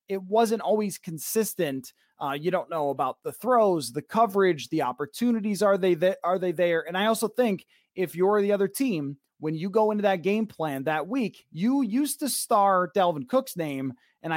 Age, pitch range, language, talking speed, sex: 20-39, 155-220 Hz, English, 195 wpm, male